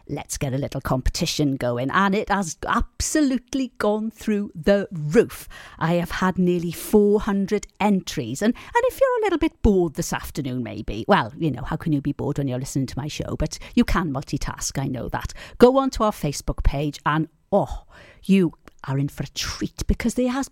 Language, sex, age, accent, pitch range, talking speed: English, female, 50-69, British, 160-230 Hz, 200 wpm